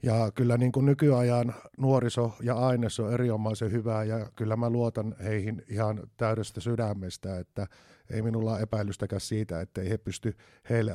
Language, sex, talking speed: Finnish, male, 165 wpm